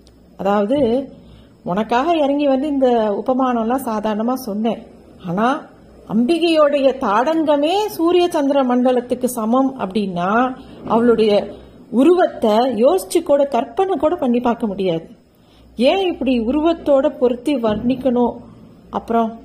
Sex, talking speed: female, 100 wpm